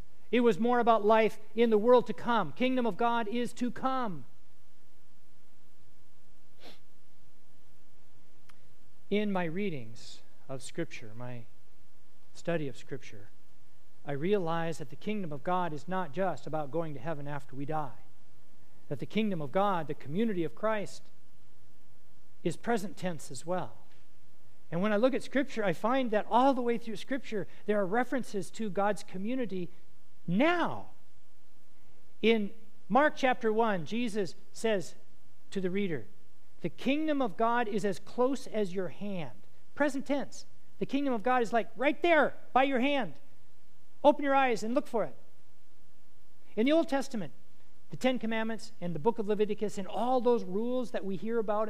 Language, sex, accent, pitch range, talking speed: English, male, American, 145-235 Hz, 160 wpm